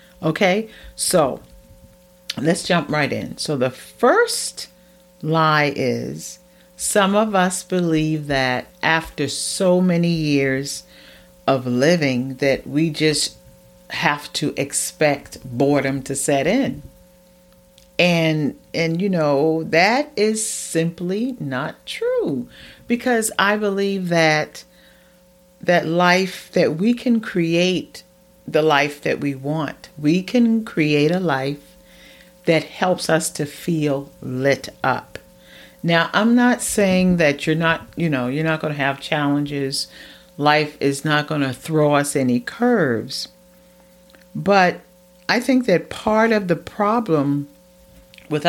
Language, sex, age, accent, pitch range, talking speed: English, female, 40-59, American, 135-180 Hz, 125 wpm